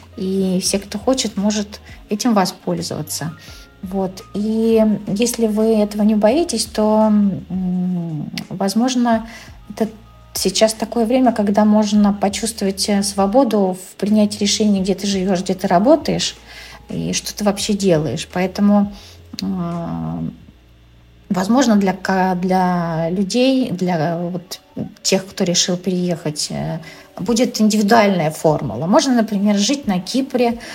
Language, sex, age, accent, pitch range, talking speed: Russian, female, 40-59, native, 175-215 Hz, 110 wpm